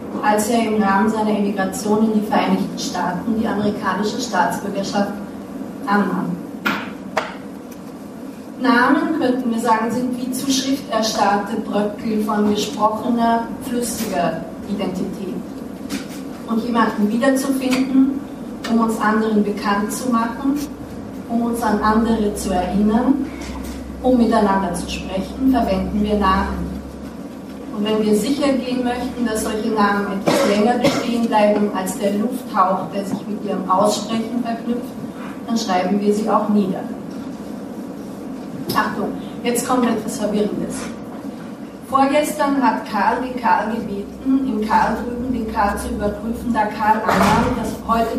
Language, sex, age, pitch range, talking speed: German, female, 30-49, 215-250 Hz, 125 wpm